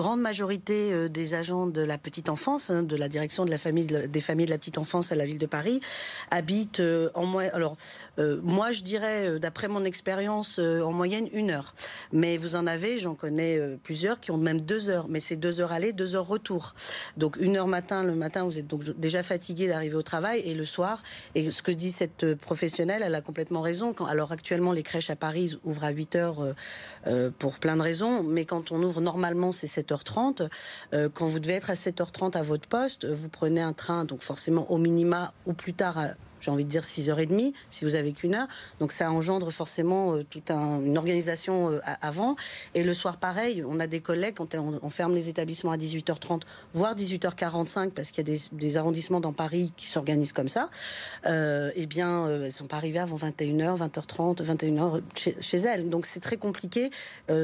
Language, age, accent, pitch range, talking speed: French, 40-59, French, 155-185 Hz, 215 wpm